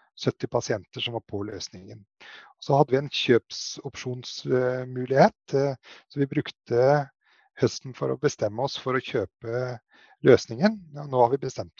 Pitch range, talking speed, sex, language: 120-145 Hz, 140 wpm, male, English